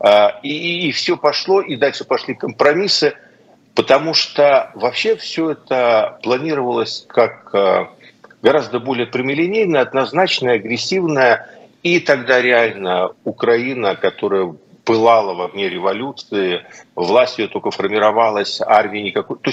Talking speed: 110 wpm